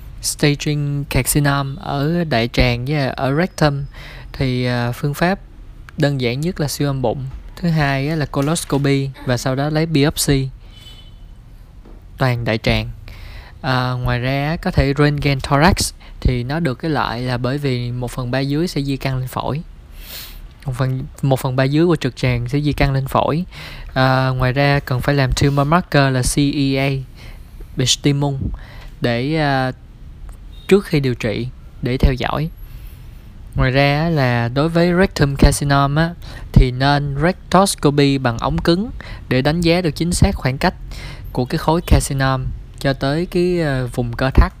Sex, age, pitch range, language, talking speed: male, 20-39, 125-150 Hz, Vietnamese, 155 wpm